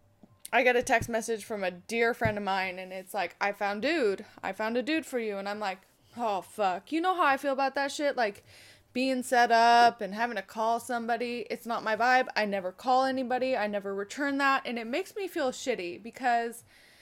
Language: English